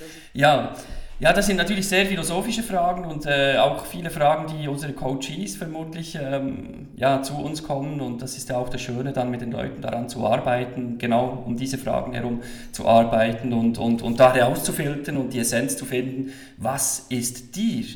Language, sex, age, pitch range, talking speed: German, male, 40-59, 130-180 Hz, 185 wpm